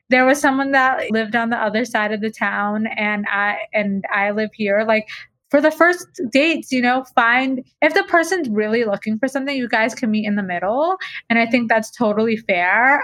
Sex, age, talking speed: female, 20-39, 210 wpm